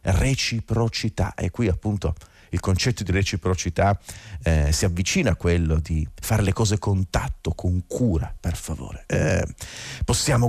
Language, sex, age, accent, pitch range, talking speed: Italian, male, 40-59, native, 85-105 Hz, 145 wpm